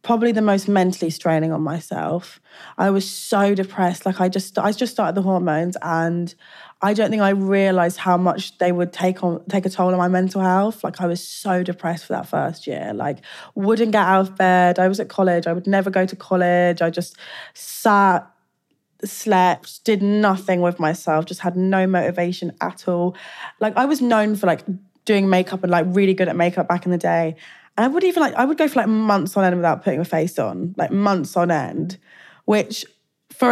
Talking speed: 210 wpm